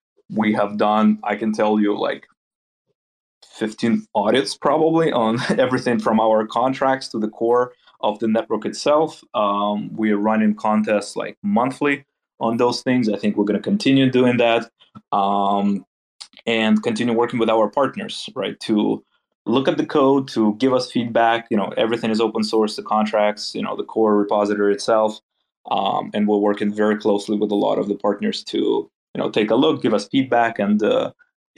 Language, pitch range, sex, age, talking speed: English, 105-130 Hz, male, 20-39, 180 wpm